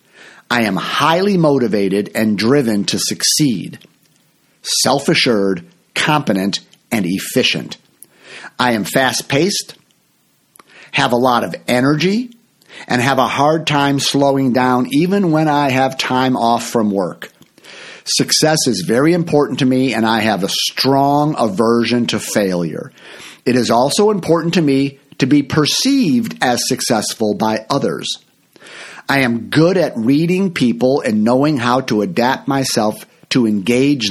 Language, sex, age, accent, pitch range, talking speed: English, male, 50-69, American, 120-155 Hz, 135 wpm